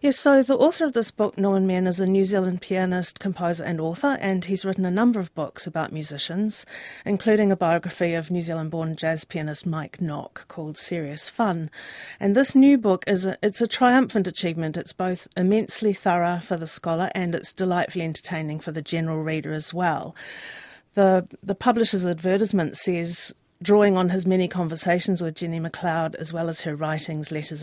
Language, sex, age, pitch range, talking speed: English, female, 40-59, 165-200 Hz, 185 wpm